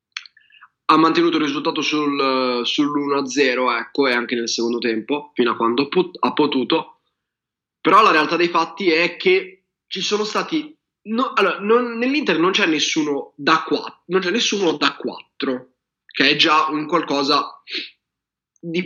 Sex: male